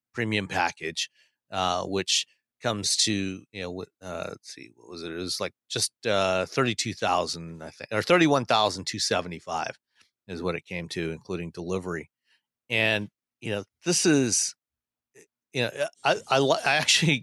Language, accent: English, American